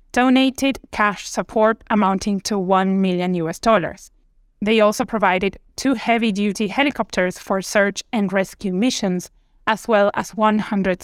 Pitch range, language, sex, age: 195-235 Hz, English, female, 20-39